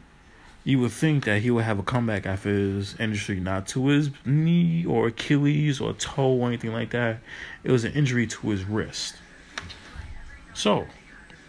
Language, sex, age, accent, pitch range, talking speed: English, male, 20-39, American, 100-125 Hz, 165 wpm